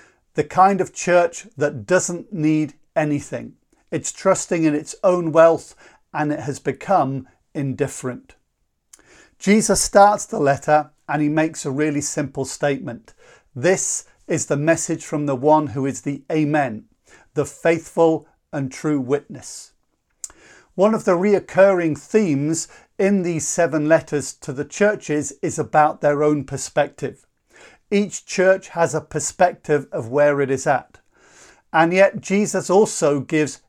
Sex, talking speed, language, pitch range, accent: male, 140 wpm, English, 145-175 Hz, British